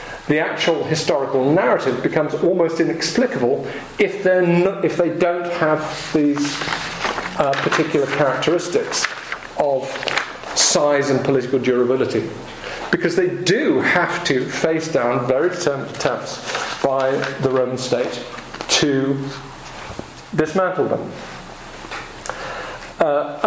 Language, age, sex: English, 40-59, male